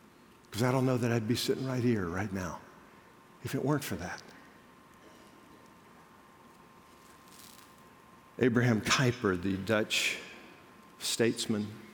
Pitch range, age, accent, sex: 105-125 Hz, 50-69, American, male